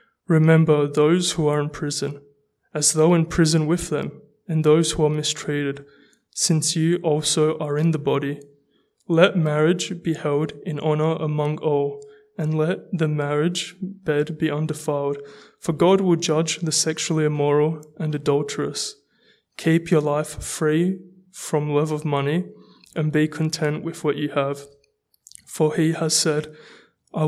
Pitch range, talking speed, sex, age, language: 150-165 Hz, 150 wpm, male, 20-39, English